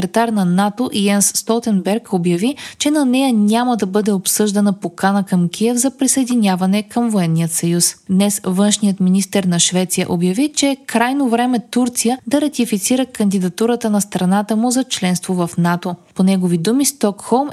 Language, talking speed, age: Bulgarian, 155 wpm, 20-39